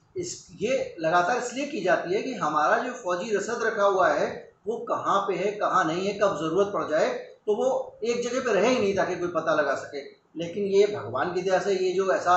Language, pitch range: Hindi, 175-230 Hz